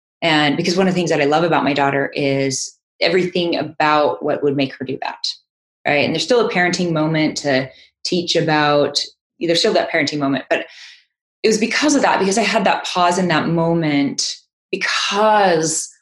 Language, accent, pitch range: English, American, 150-180 Hz